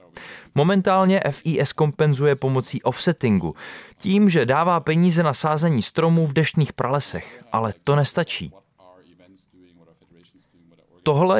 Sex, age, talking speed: male, 20-39, 100 wpm